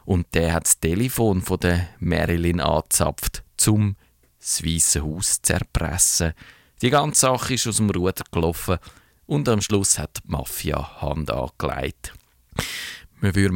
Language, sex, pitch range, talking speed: German, male, 85-110 Hz, 140 wpm